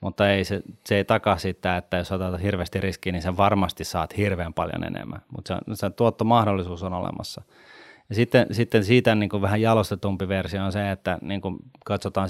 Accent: native